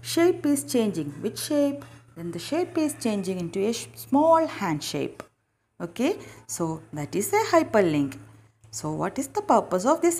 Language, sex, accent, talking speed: English, female, Indian, 170 wpm